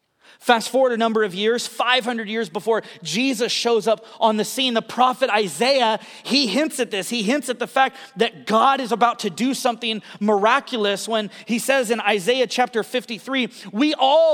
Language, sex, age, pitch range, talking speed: English, male, 30-49, 200-250 Hz, 185 wpm